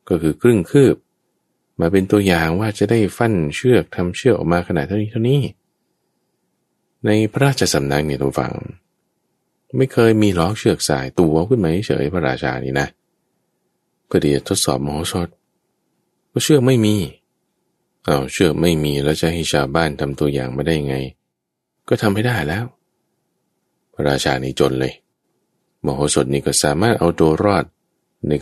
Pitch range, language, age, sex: 75-110 Hz, English, 20-39, male